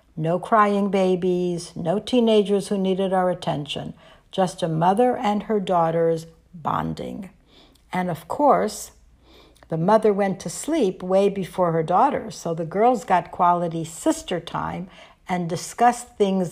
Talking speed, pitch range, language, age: 140 wpm, 175-215 Hz, English, 60-79